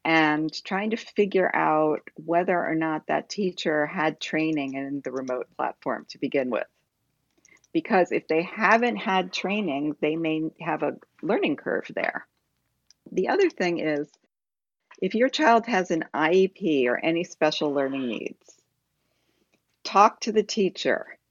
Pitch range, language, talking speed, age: 150-185 Hz, English, 145 wpm, 50-69